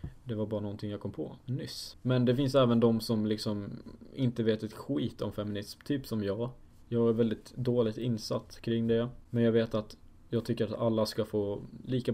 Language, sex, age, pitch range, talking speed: Swedish, male, 20-39, 110-125 Hz, 210 wpm